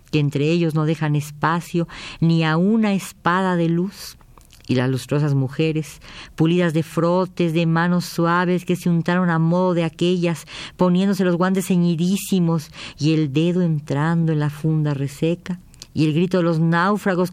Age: 50-69